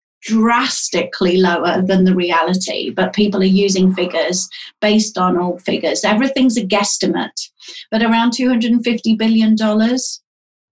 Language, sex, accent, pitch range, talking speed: English, female, British, 185-225 Hz, 125 wpm